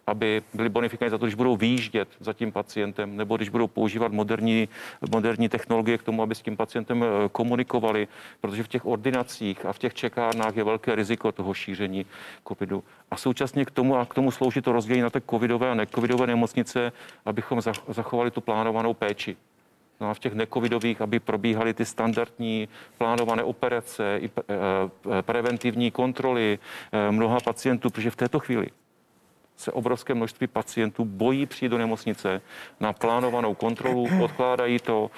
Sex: male